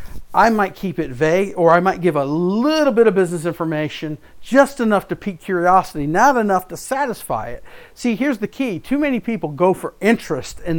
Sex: male